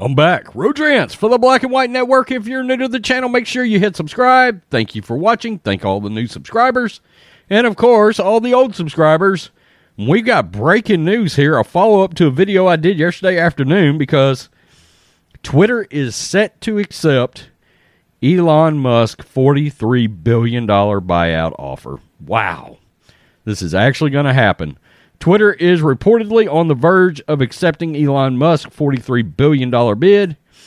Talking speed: 160 wpm